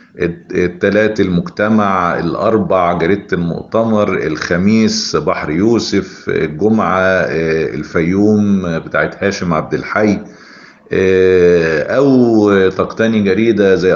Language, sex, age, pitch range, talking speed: Arabic, male, 50-69, 85-105 Hz, 75 wpm